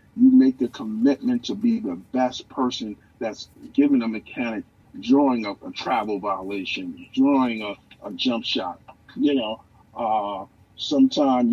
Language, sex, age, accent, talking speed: English, male, 50-69, American, 140 wpm